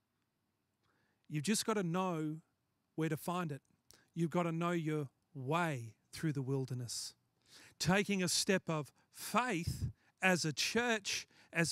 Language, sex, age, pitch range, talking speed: English, male, 40-59, 125-195 Hz, 140 wpm